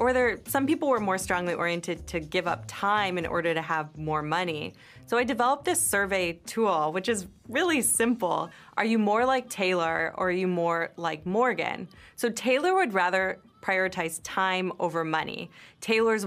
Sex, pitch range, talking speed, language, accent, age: female, 165-200 Hz, 175 wpm, English, American, 20-39